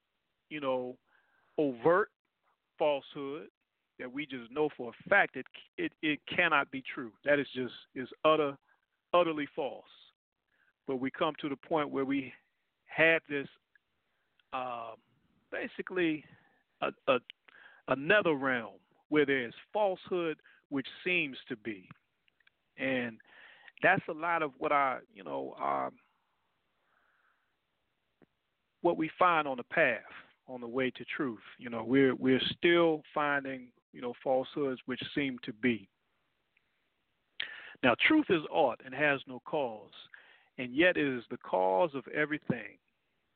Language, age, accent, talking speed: English, 40-59, American, 135 wpm